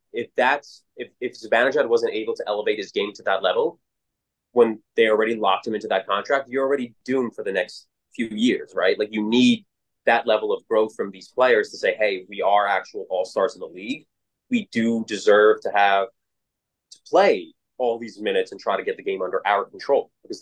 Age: 20-39